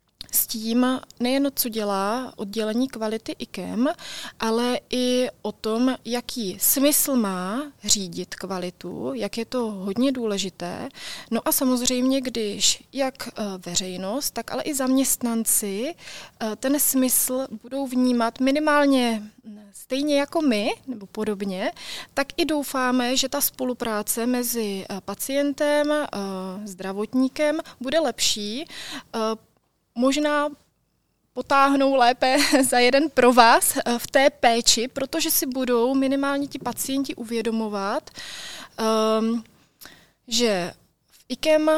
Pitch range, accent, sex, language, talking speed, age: 215-275 Hz, native, female, Czech, 105 wpm, 30-49